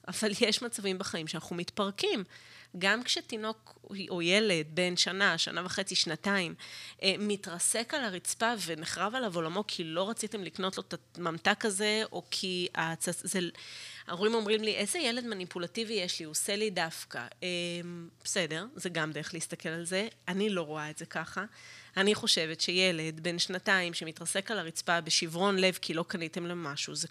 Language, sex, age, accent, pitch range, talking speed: Hebrew, female, 30-49, native, 165-210 Hz, 165 wpm